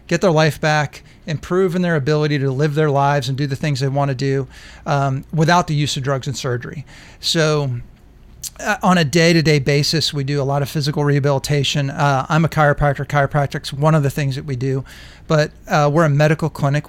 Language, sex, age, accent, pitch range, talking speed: English, male, 40-59, American, 140-160 Hz, 205 wpm